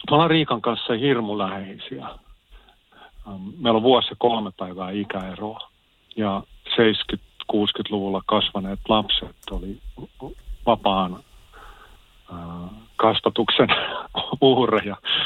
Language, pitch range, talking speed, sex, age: Finnish, 95-110 Hz, 75 wpm, male, 50-69